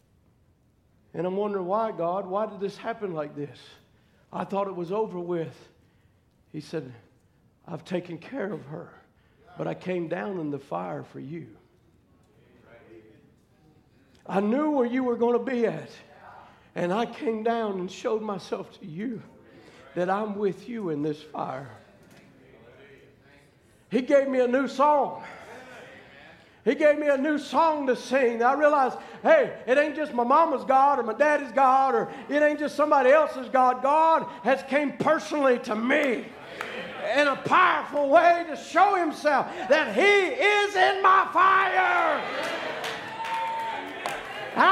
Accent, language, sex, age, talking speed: American, English, male, 60-79, 150 wpm